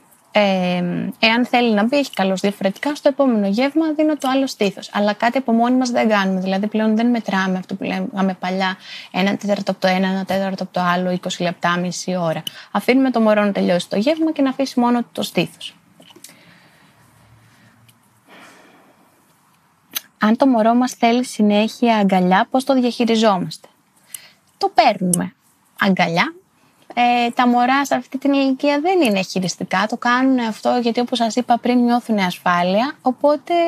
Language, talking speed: Greek, 160 wpm